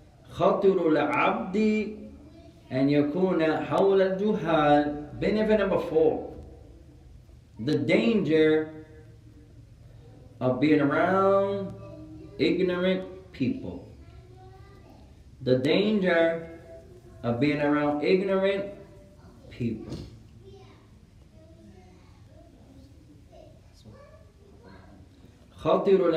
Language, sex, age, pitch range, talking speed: English, male, 40-59, 115-190 Hz, 55 wpm